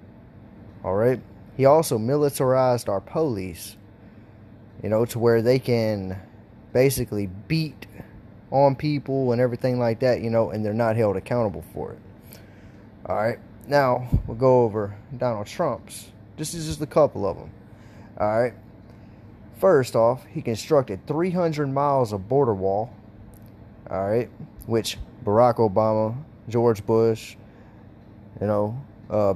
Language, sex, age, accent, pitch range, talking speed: English, male, 20-39, American, 105-135 Hz, 125 wpm